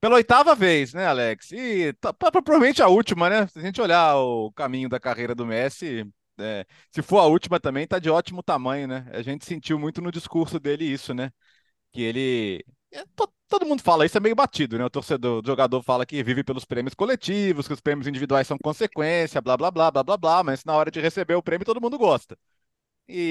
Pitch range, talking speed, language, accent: 135-195 Hz, 210 wpm, Portuguese, Brazilian